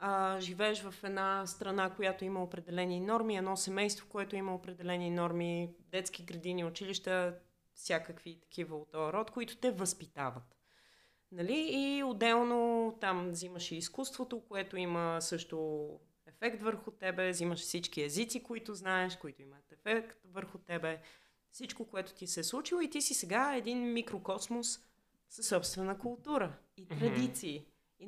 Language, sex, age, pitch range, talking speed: Bulgarian, female, 30-49, 175-245 Hz, 140 wpm